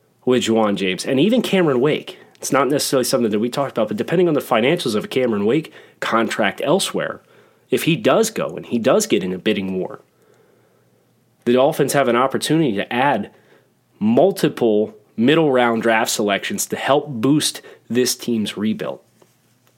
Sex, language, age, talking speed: male, English, 30-49, 170 wpm